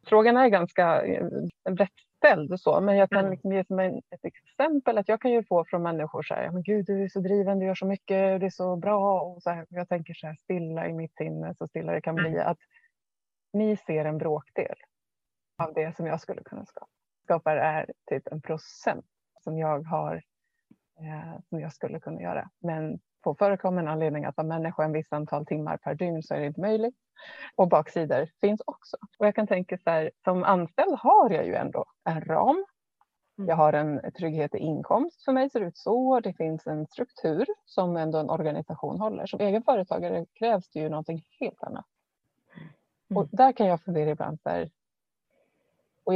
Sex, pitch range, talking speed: female, 160-205 Hz, 190 wpm